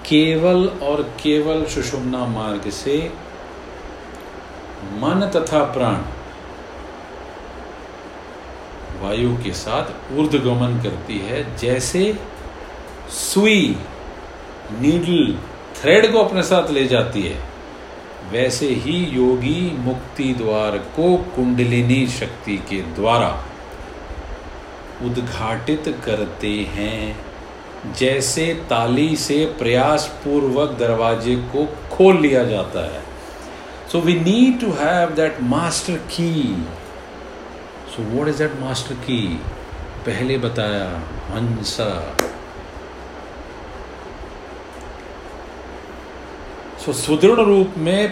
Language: Hindi